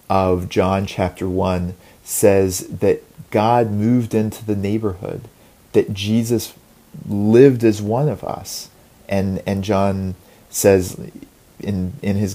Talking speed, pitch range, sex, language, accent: 120 wpm, 95-115 Hz, male, English, American